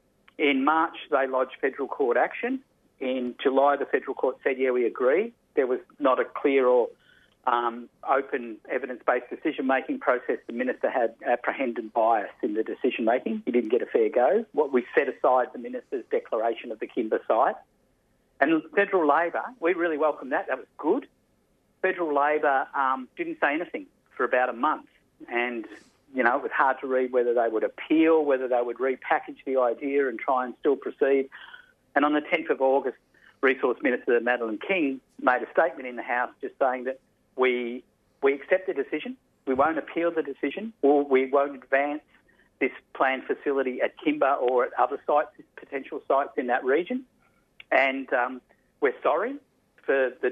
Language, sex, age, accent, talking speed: English, male, 50-69, Australian, 180 wpm